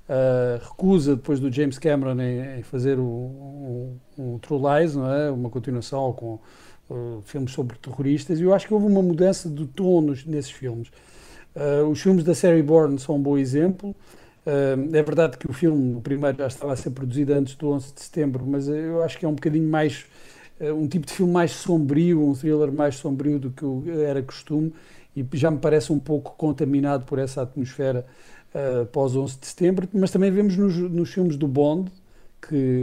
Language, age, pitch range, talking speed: Portuguese, 50-69, 135-160 Hz, 195 wpm